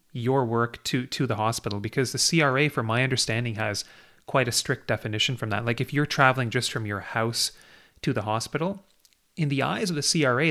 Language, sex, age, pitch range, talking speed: English, male, 30-49, 115-140 Hz, 205 wpm